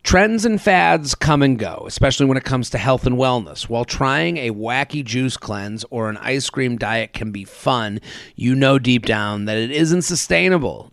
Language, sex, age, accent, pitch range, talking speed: English, male, 30-49, American, 115-140 Hz, 200 wpm